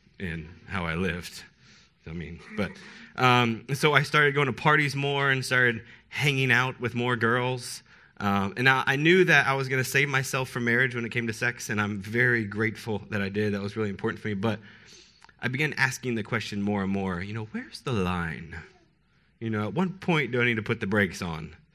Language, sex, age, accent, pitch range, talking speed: English, male, 20-39, American, 100-130 Hz, 225 wpm